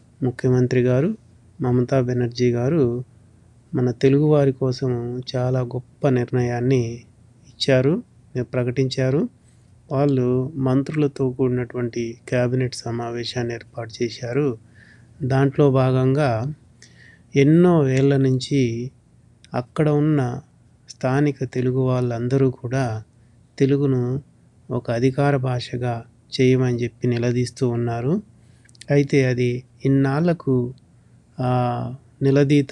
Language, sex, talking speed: Telugu, male, 80 wpm